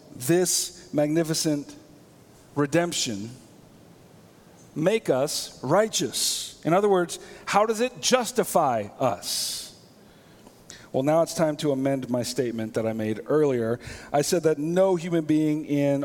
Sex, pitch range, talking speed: male, 145-195 Hz, 125 wpm